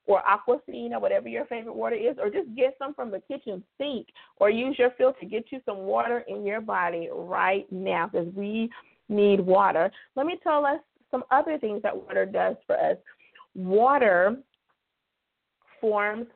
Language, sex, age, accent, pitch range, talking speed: English, female, 40-59, American, 190-245 Hz, 170 wpm